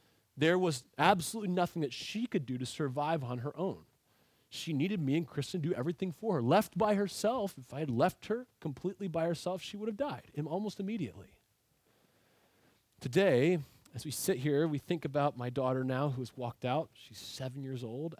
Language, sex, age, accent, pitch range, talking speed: English, male, 30-49, American, 120-180 Hz, 195 wpm